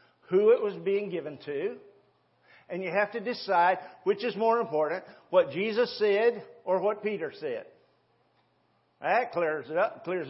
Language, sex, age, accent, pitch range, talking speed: English, male, 50-69, American, 175-250 Hz, 155 wpm